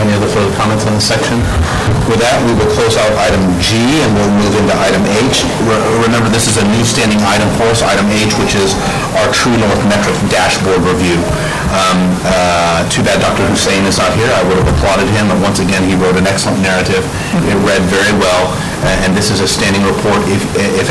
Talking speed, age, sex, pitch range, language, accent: 210 wpm, 40-59, male, 95-110 Hz, English, American